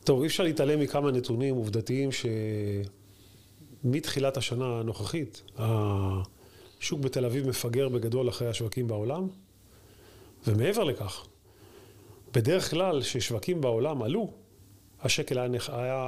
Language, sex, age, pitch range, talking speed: Hebrew, male, 30-49, 105-145 Hz, 100 wpm